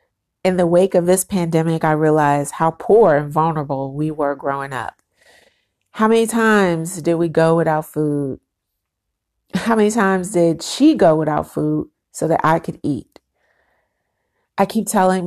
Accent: American